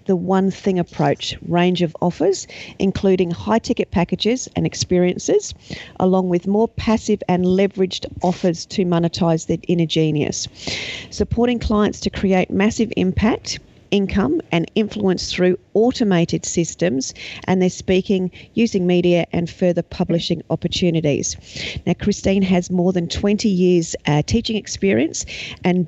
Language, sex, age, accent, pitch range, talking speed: English, female, 40-59, Australian, 165-195 Hz, 130 wpm